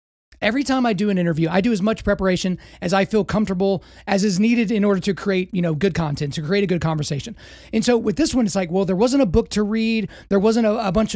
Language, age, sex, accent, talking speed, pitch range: English, 30-49, male, American, 270 wpm, 175-220 Hz